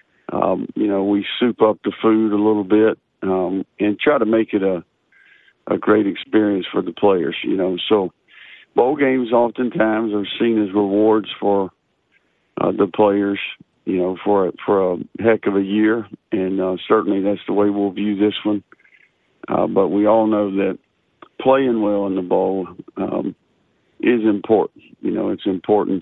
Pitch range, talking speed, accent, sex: 100-110 Hz, 175 wpm, American, male